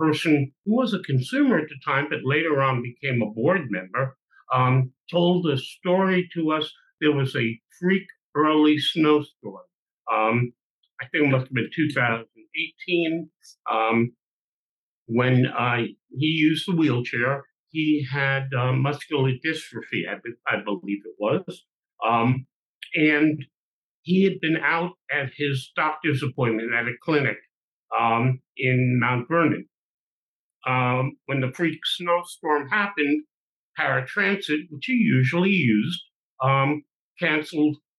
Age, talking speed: 60-79, 130 wpm